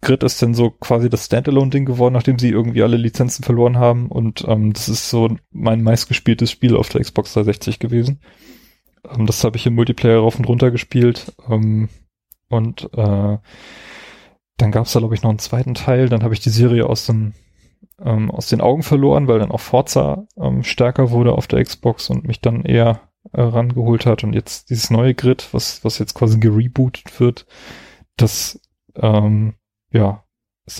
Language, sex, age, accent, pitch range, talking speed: German, male, 20-39, German, 110-120 Hz, 185 wpm